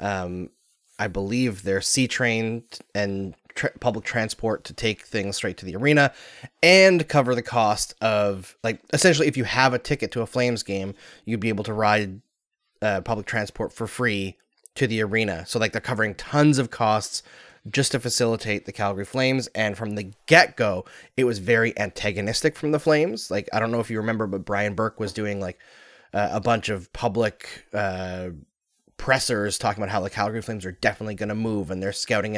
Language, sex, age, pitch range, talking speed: English, male, 20-39, 100-125 Hz, 195 wpm